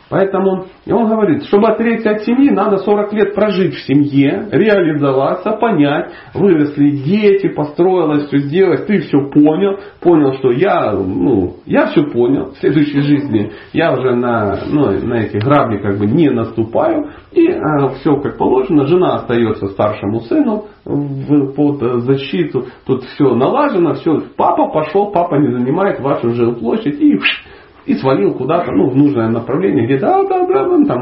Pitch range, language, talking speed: 120-200 Hz, Russian, 155 wpm